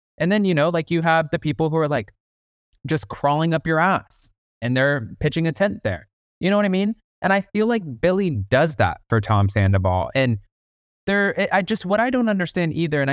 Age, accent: 20-39, American